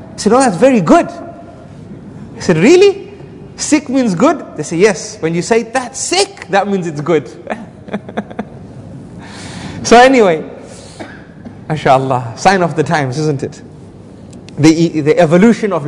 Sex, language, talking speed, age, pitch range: male, English, 145 wpm, 30-49, 160-220 Hz